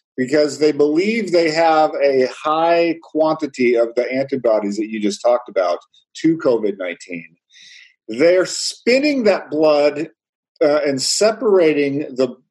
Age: 50-69